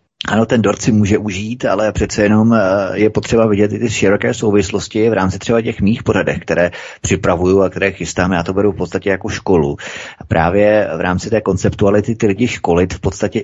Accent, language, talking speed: native, Czech, 195 wpm